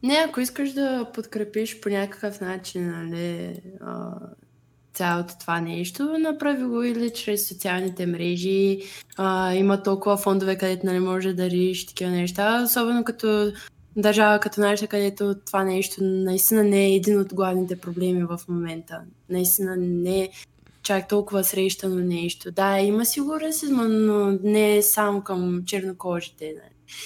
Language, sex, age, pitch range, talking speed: Bulgarian, female, 20-39, 185-220 Hz, 145 wpm